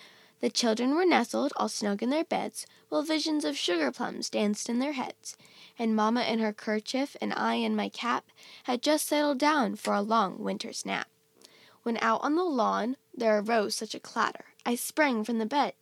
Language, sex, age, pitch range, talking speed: English, female, 10-29, 220-295 Hz, 195 wpm